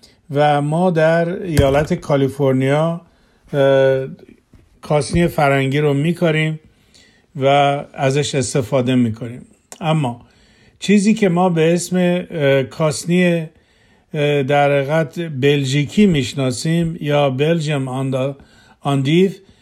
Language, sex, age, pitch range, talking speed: Persian, male, 50-69, 135-165 Hz, 85 wpm